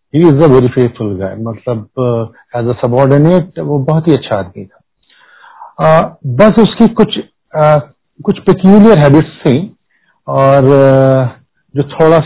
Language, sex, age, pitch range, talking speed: Hindi, male, 50-69, 115-150 Hz, 120 wpm